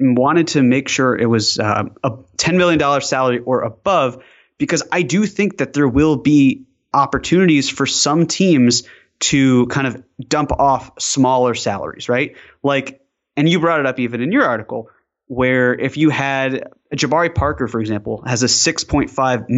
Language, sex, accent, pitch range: English, male, American, 120-150 Hz